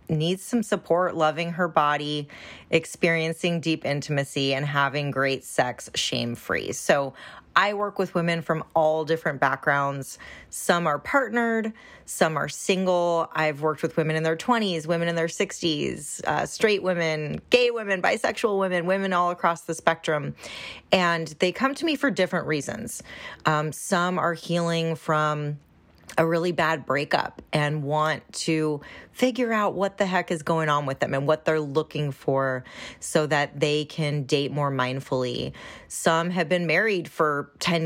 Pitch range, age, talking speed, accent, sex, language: 150-175 Hz, 30-49, 155 wpm, American, female, English